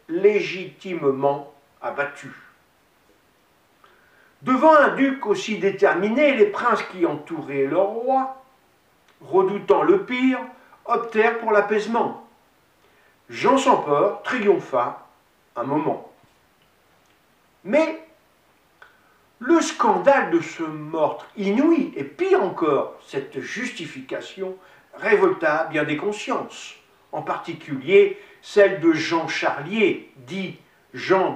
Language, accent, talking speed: French, French, 90 wpm